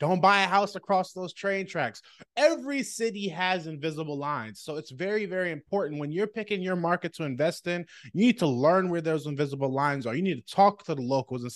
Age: 20-39